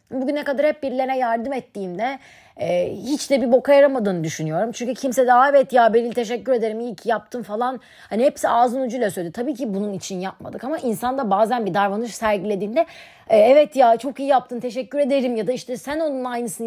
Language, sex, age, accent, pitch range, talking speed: Turkish, female, 30-49, native, 215-270 Hz, 200 wpm